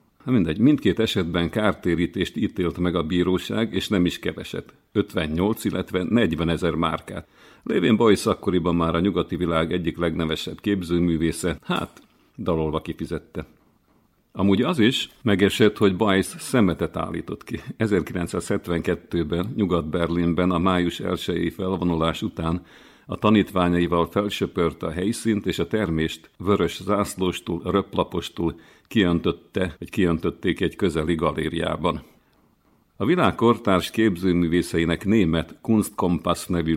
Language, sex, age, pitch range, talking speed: Hungarian, male, 50-69, 85-95 Hz, 115 wpm